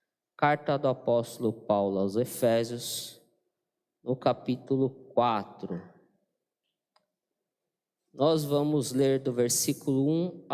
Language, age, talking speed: Portuguese, 20-39, 85 wpm